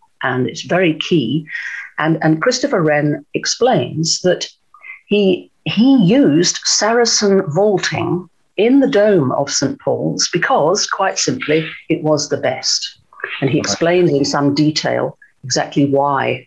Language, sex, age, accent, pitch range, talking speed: English, female, 50-69, British, 150-210 Hz, 130 wpm